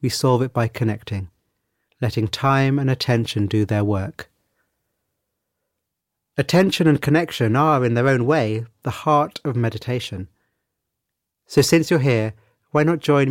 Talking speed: 140 wpm